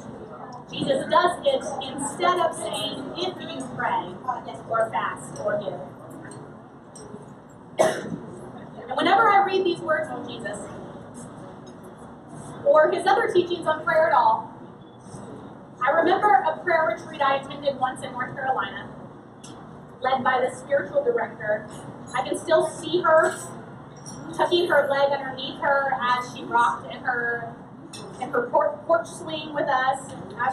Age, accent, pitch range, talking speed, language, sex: 20-39, American, 255-325 Hz, 135 wpm, English, female